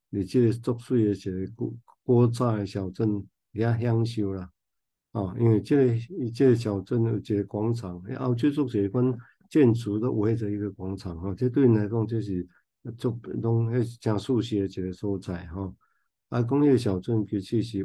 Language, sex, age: Chinese, male, 50-69